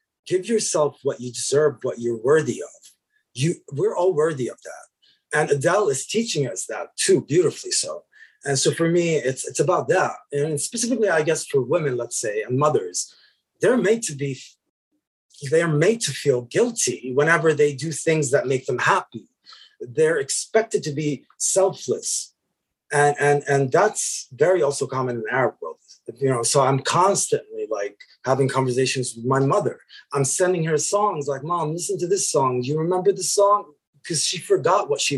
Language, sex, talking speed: English, male, 180 wpm